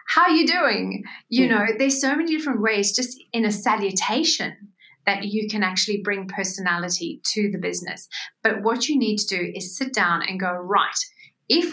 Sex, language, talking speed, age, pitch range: female, English, 190 wpm, 40-59, 190-240 Hz